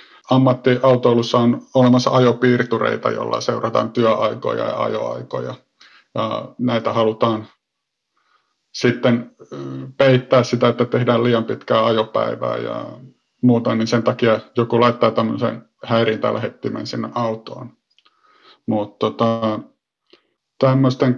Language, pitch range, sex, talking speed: Finnish, 115-125 Hz, male, 90 wpm